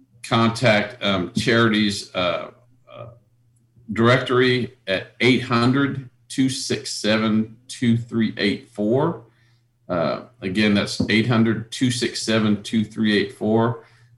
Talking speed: 50 wpm